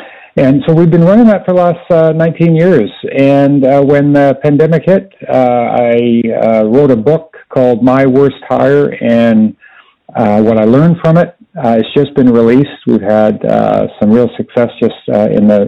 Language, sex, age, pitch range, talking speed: English, male, 50-69, 110-145 Hz, 190 wpm